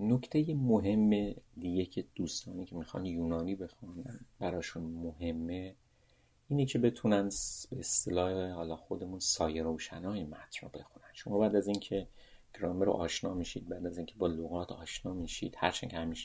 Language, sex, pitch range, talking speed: Persian, male, 85-105 Hz, 150 wpm